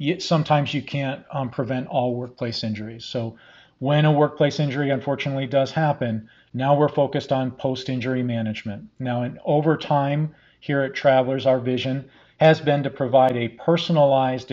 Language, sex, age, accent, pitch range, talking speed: English, male, 40-59, American, 120-145 Hz, 155 wpm